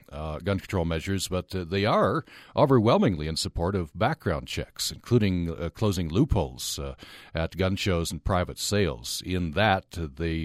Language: English